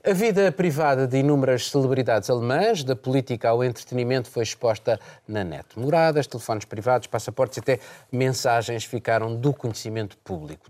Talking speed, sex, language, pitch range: 145 wpm, male, Portuguese, 110-140 Hz